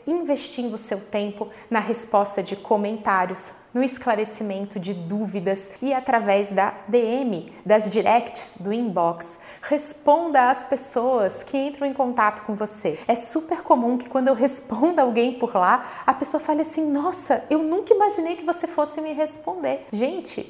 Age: 30-49